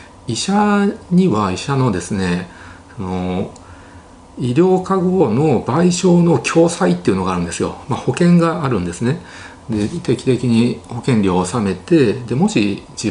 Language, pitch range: Japanese, 90-125 Hz